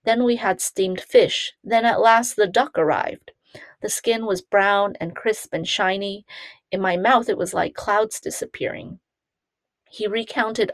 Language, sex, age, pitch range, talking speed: English, female, 30-49, 185-220 Hz, 160 wpm